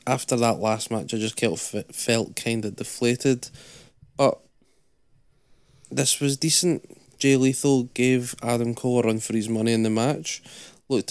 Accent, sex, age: British, male, 20-39